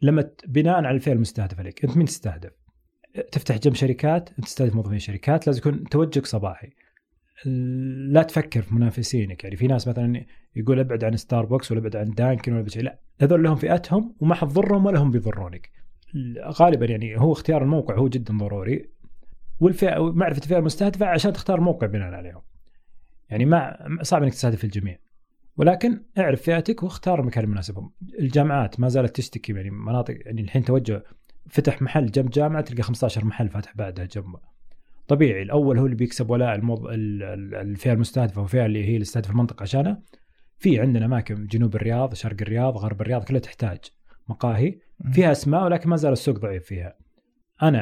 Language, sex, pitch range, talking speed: Arabic, male, 110-150 Hz, 165 wpm